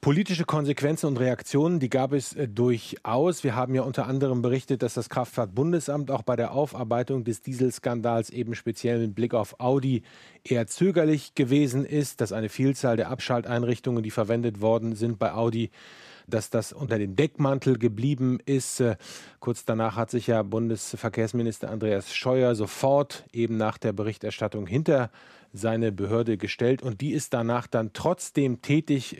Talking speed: 160 wpm